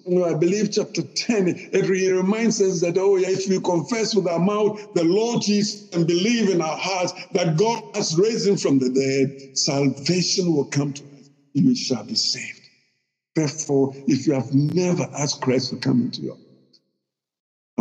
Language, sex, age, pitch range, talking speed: English, male, 60-79, 130-185 Hz, 185 wpm